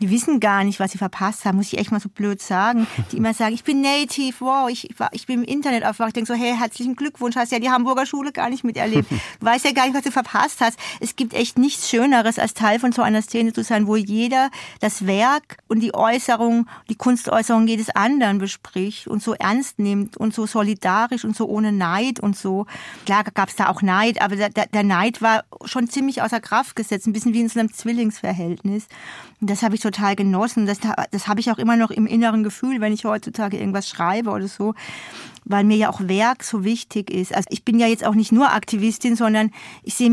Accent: German